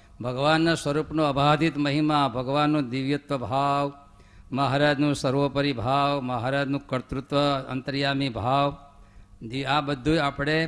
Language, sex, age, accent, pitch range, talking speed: Gujarati, male, 50-69, native, 100-145 Hz, 95 wpm